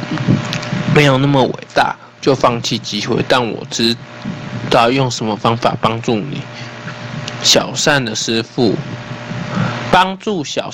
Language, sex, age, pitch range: Chinese, male, 20-39, 110-140 Hz